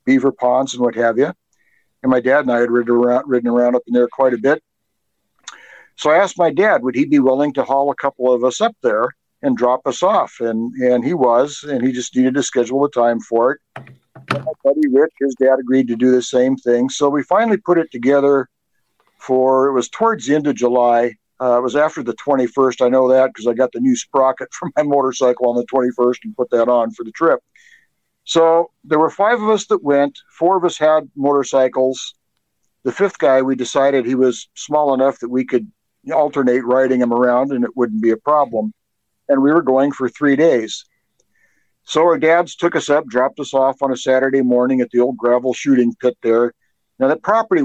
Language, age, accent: English, 60-79, American